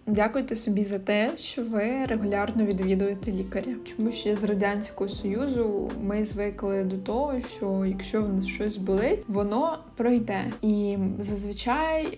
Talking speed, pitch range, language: 140 wpm, 195-225 Hz, Ukrainian